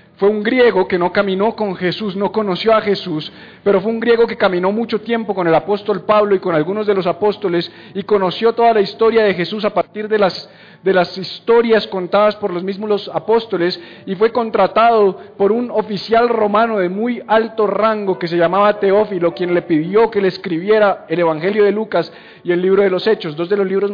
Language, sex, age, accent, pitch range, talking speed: Spanish, male, 50-69, Colombian, 175-210 Hz, 215 wpm